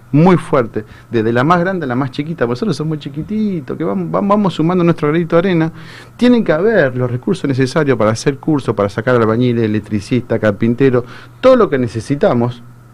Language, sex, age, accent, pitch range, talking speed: Spanish, male, 40-59, Argentinian, 120-165 Hz, 185 wpm